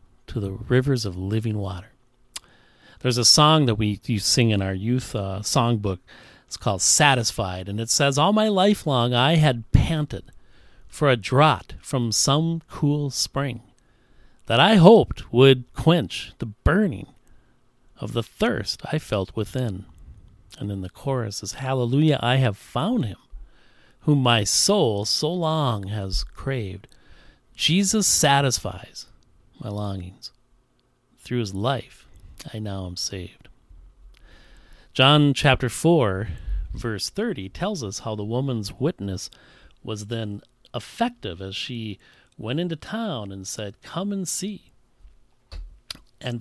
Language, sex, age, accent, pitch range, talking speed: English, male, 40-59, American, 105-145 Hz, 135 wpm